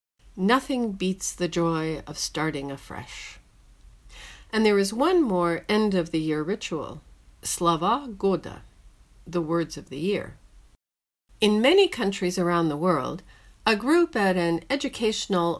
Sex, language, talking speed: female, English, 125 wpm